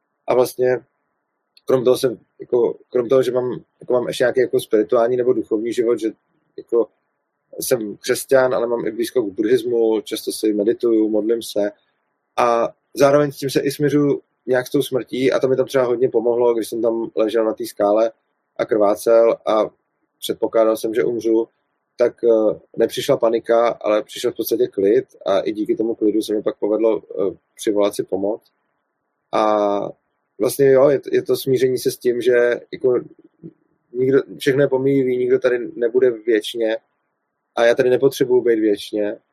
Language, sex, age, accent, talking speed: Czech, male, 30-49, native, 170 wpm